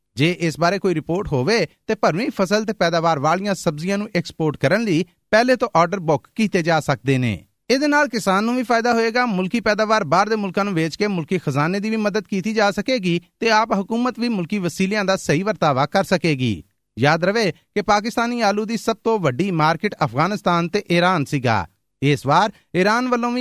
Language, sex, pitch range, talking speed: Punjabi, male, 155-210 Hz, 195 wpm